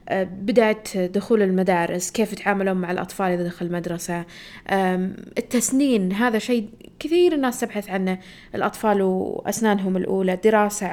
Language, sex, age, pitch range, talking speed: Arabic, female, 20-39, 190-240 Hz, 115 wpm